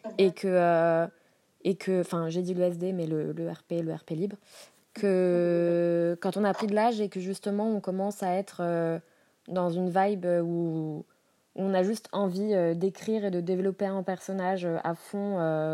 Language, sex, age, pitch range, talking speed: French, female, 20-39, 170-200 Hz, 185 wpm